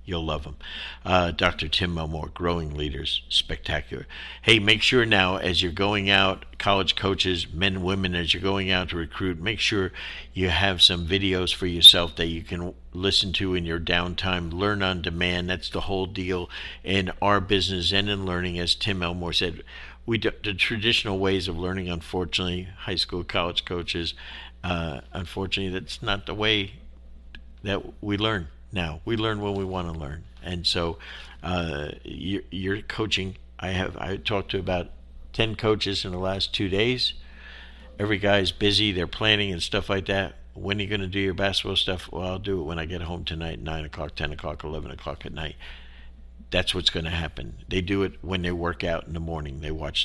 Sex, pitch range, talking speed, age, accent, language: male, 80-95 Hz, 190 wpm, 60-79, American, English